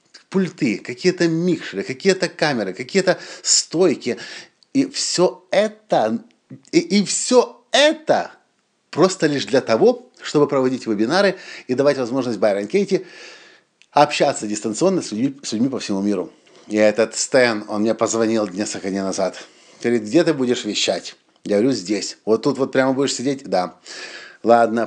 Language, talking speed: Russian, 140 wpm